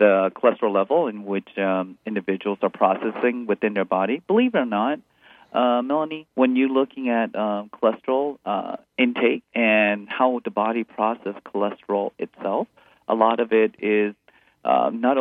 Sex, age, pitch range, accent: male, 40-59, 105-130 Hz, American